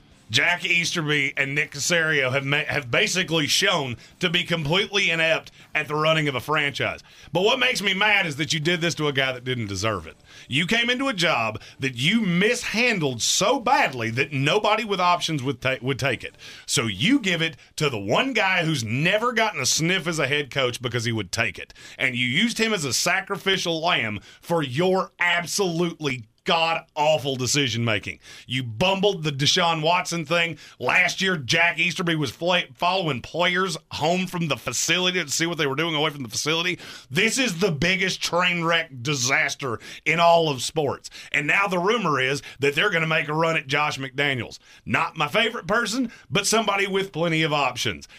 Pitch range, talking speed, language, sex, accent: 140-185 Hz, 190 wpm, English, male, American